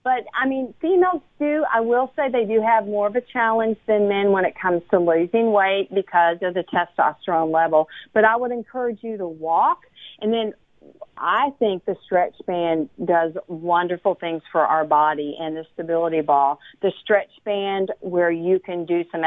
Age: 50-69